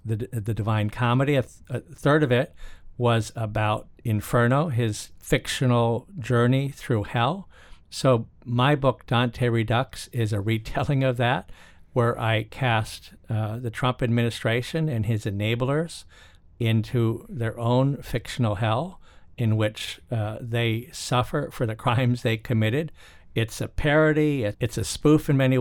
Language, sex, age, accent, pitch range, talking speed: English, male, 50-69, American, 110-130 Hz, 140 wpm